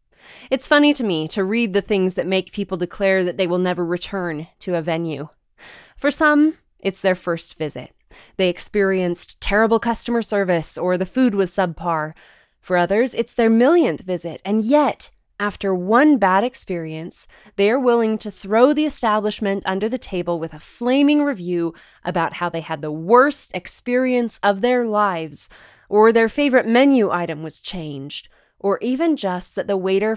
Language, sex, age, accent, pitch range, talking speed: English, female, 20-39, American, 180-235 Hz, 170 wpm